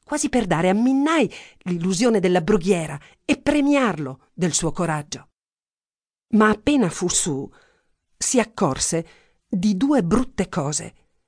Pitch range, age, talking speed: 150-225 Hz, 50-69, 120 wpm